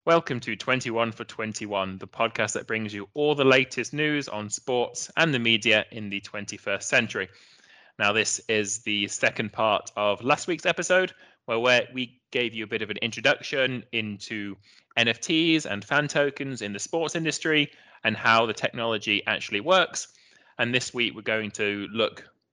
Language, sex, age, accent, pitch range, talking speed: English, male, 20-39, British, 105-130 Hz, 170 wpm